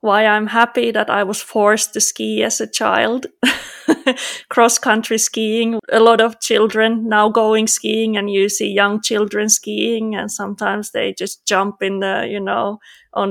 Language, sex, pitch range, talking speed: English, female, 200-225 Hz, 165 wpm